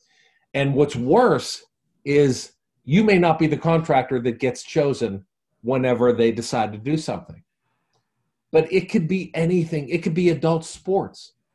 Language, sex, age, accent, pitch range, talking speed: English, male, 50-69, American, 125-175 Hz, 150 wpm